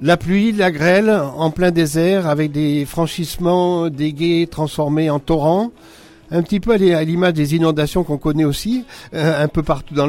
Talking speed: 170 wpm